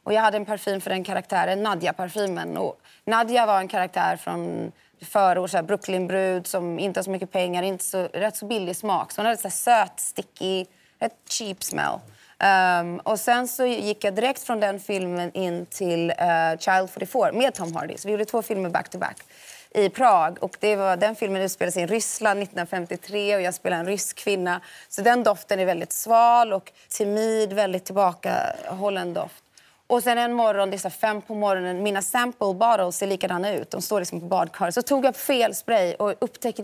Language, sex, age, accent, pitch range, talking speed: Swedish, female, 20-39, native, 190-245 Hz, 200 wpm